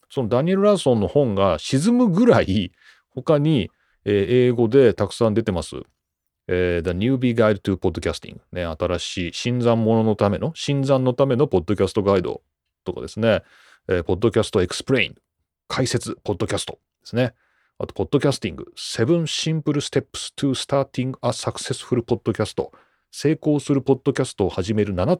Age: 40-59